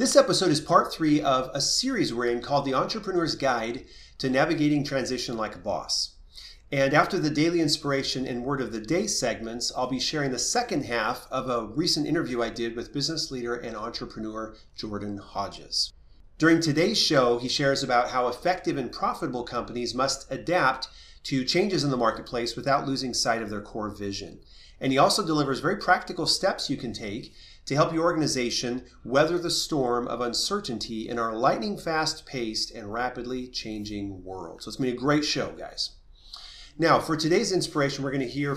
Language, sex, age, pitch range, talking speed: English, male, 30-49, 115-155 Hz, 185 wpm